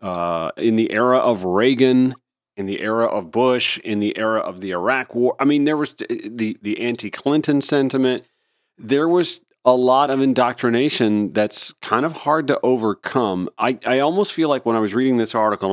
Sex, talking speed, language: male, 185 wpm, English